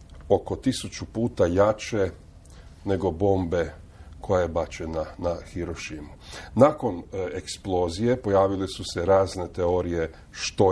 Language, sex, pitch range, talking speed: Croatian, male, 85-95 Hz, 105 wpm